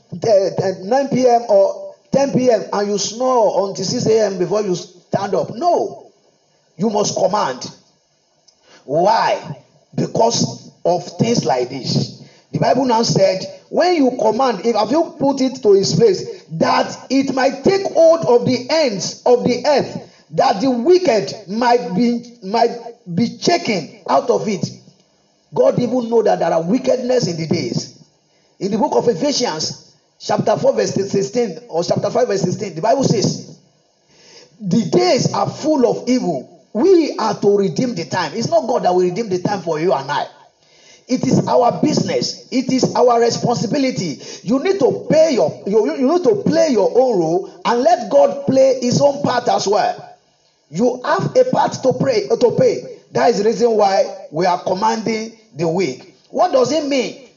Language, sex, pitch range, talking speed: English, male, 200-275 Hz, 170 wpm